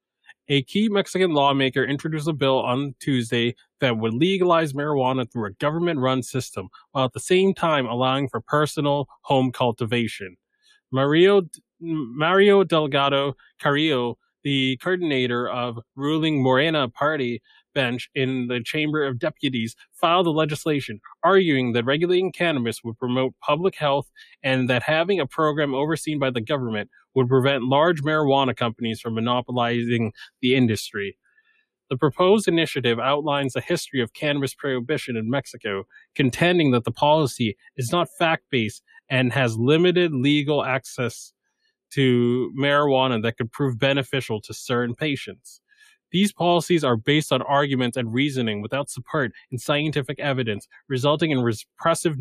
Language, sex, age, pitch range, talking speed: English, male, 20-39, 125-155 Hz, 140 wpm